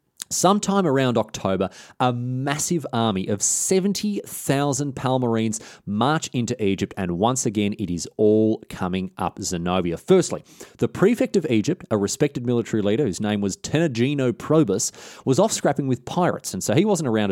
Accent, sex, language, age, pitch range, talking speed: Australian, male, English, 30-49, 105-145 Hz, 155 wpm